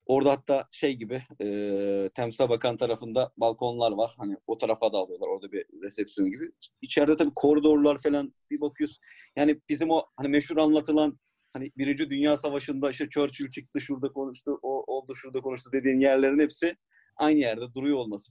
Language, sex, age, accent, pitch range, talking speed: Turkish, male, 30-49, native, 120-145 Hz, 165 wpm